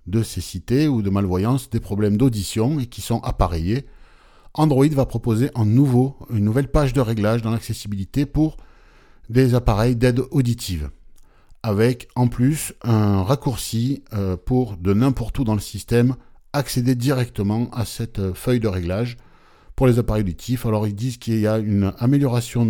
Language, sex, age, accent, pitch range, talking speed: French, male, 50-69, French, 100-125 Hz, 160 wpm